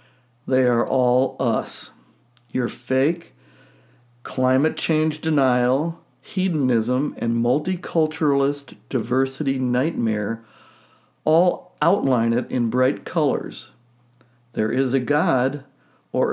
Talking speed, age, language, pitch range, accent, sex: 90 wpm, 60-79, English, 120-155 Hz, American, male